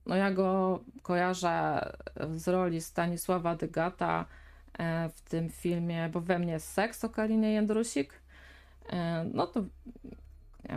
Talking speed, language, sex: 115 wpm, Polish, female